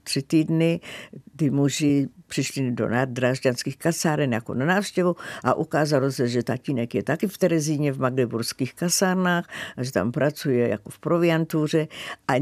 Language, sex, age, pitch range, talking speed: Czech, female, 60-79, 130-170 Hz, 150 wpm